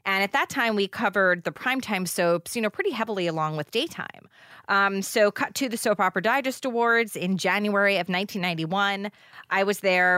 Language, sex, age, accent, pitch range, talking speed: English, female, 30-49, American, 165-205 Hz, 190 wpm